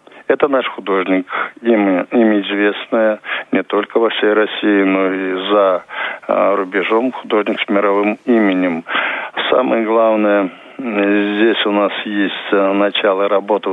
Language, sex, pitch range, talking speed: Russian, male, 100-115 Hz, 120 wpm